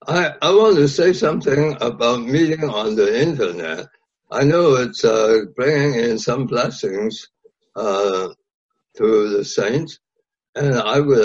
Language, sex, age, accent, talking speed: English, male, 60-79, American, 140 wpm